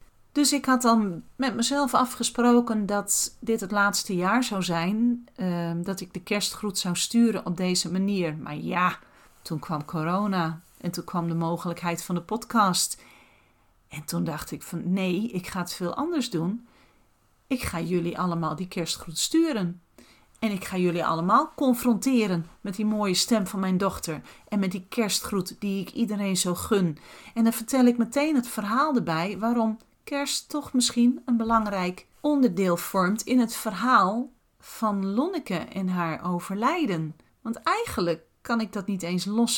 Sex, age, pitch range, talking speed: female, 40-59, 180-235 Hz, 165 wpm